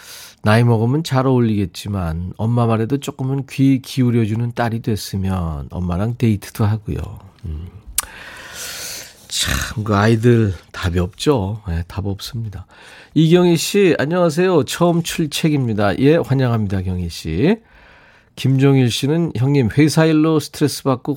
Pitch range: 100-145 Hz